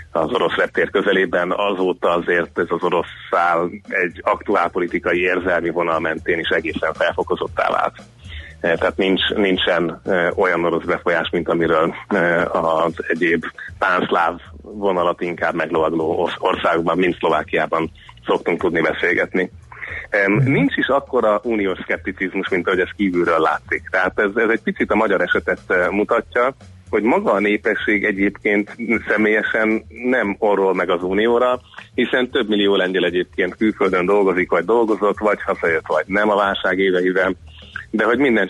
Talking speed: 135 wpm